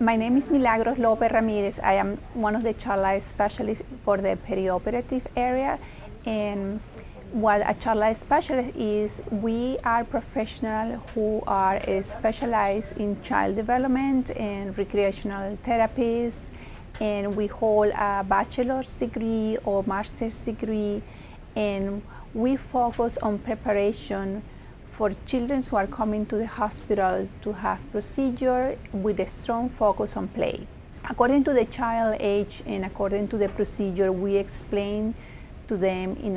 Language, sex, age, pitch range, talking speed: English, female, 40-59, 195-235 Hz, 135 wpm